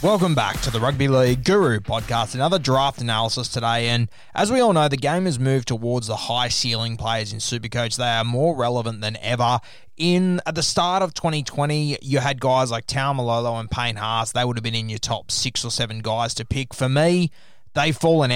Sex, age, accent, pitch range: male, 20-39, Australian, 115-145 Hz